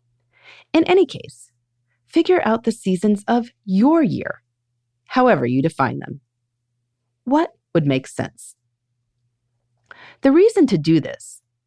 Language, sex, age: English, female, 30-49